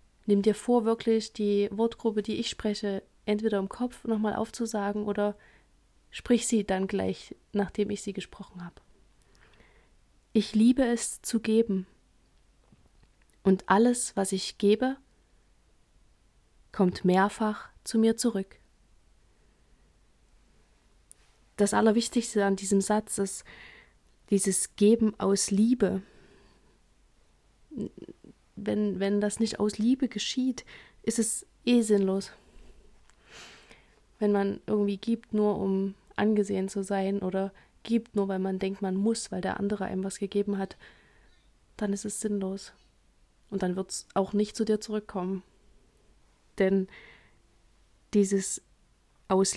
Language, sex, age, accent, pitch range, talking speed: German, female, 30-49, German, 195-220 Hz, 120 wpm